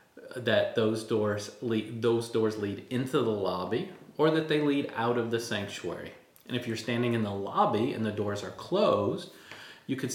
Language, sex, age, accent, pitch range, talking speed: English, male, 40-59, American, 105-125 Hz, 190 wpm